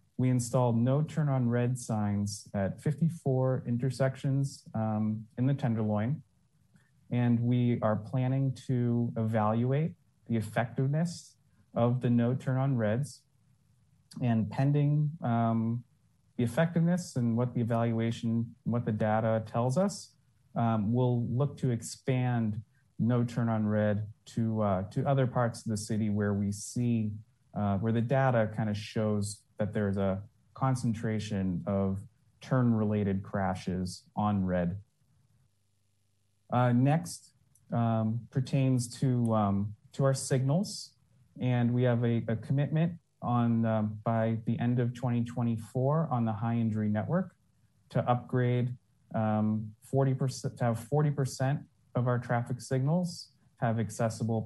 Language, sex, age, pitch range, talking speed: English, male, 30-49, 110-130 Hz, 130 wpm